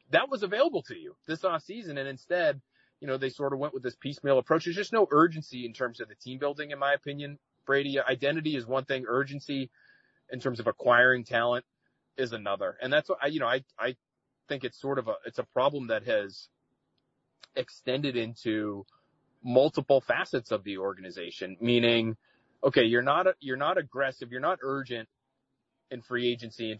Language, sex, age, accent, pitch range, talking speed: English, male, 30-49, American, 120-150 Hz, 190 wpm